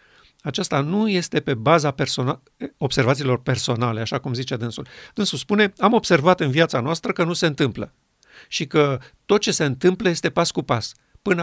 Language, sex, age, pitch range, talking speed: Romanian, male, 50-69, 135-170 Hz, 175 wpm